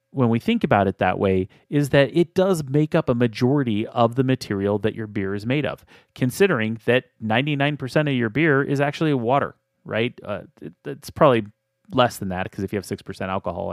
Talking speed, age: 205 wpm, 30-49